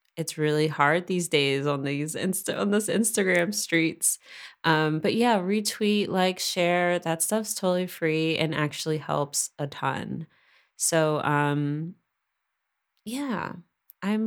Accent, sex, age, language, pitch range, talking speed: American, female, 20-39, English, 150-195 Hz, 130 wpm